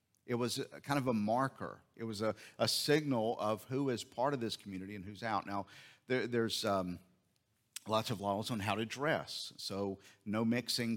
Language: English